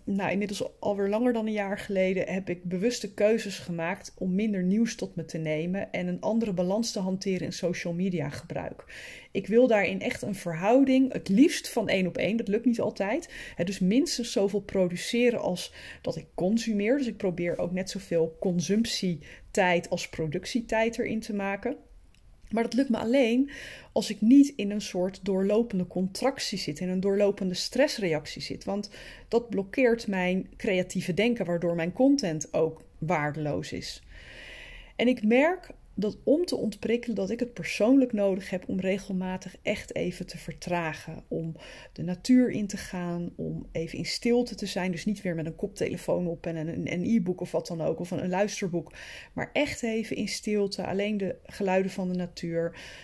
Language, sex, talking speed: Dutch, female, 175 wpm